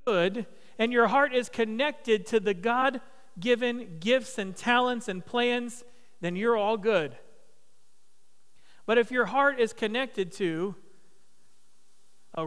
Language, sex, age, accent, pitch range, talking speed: English, male, 40-59, American, 155-210 Hz, 125 wpm